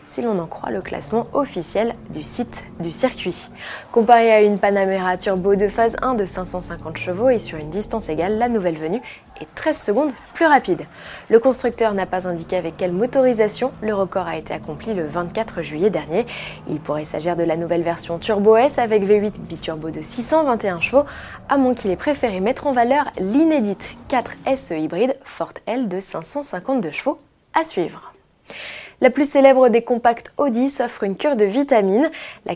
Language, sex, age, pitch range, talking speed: French, female, 20-39, 180-255 Hz, 180 wpm